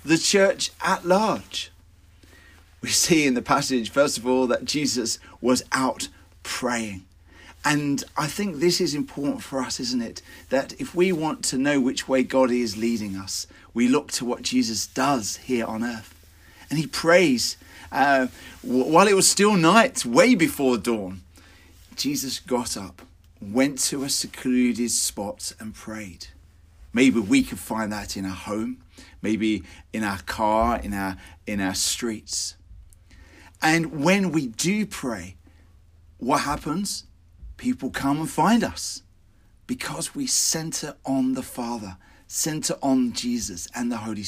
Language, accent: English, British